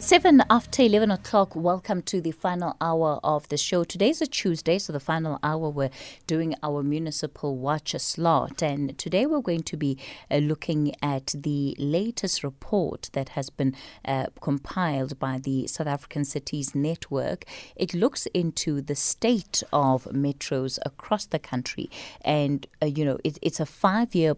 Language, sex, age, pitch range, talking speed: English, female, 30-49, 140-180 Hz, 160 wpm